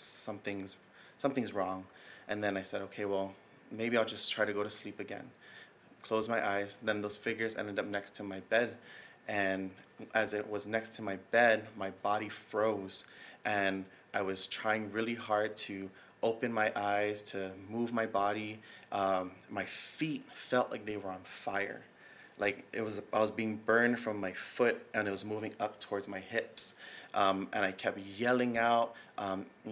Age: 20-39